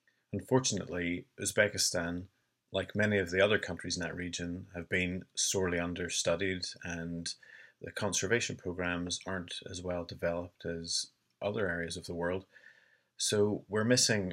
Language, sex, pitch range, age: English, male, 85-100 Hz, 30-49